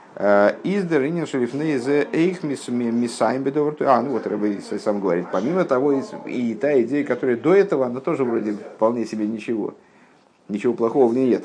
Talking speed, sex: 155 wpm, male